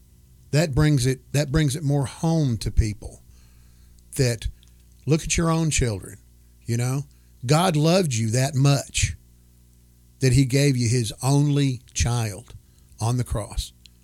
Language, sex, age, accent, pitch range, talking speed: English, male, 50-69, American, 80-130 Hz, 140 wpm